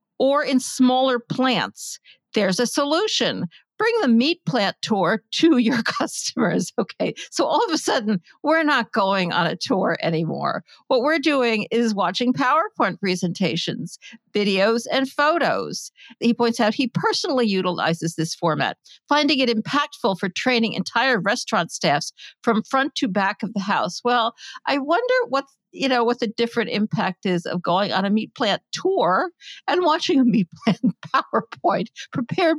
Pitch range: 195-265 Hz